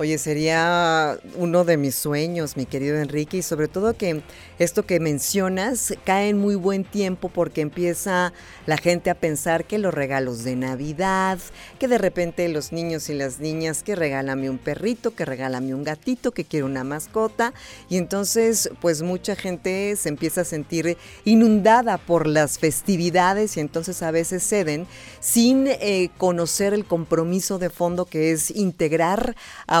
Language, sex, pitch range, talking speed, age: Spanish, female, 150-185 Hz, 165 wpm, 40-59